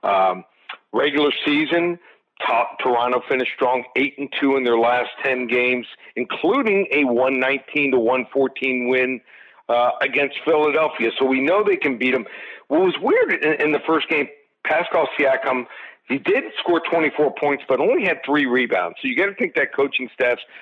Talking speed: 170 wpm